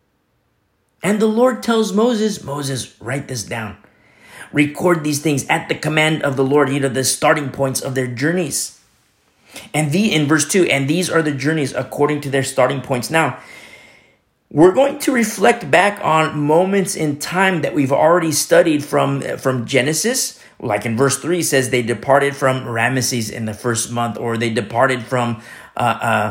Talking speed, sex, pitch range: 175 wpm, male, 120-160 Hz